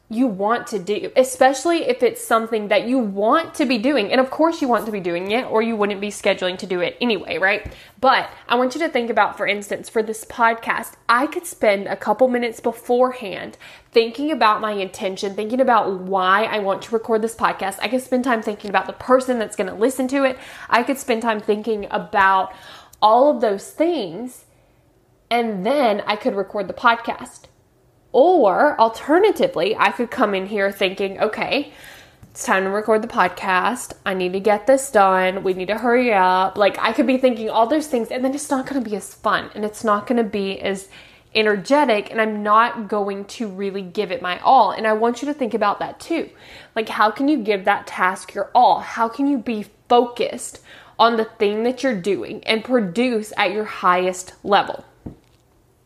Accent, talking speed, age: American, 205 wpm, 10-29